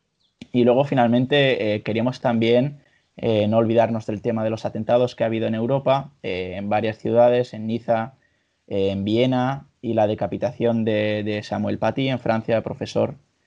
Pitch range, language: 110-125 Hz, Spanish